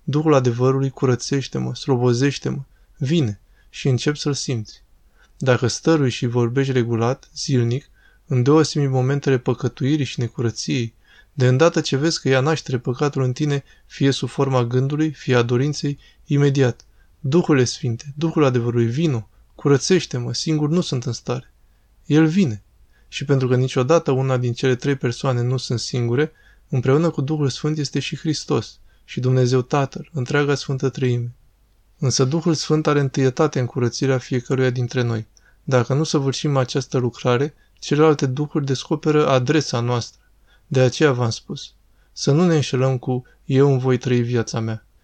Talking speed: 150 wpm